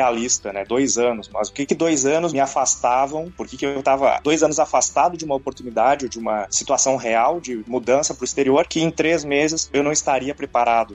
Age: 20-39